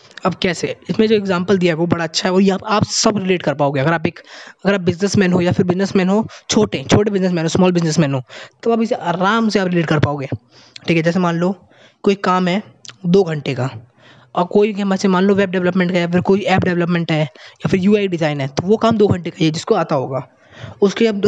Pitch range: 155-195 Hz